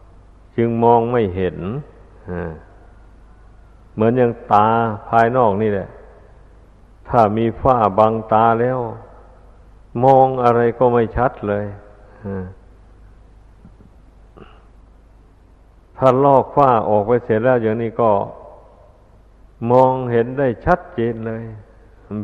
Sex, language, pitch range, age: male, Thai, 95-120 Hz, 60-79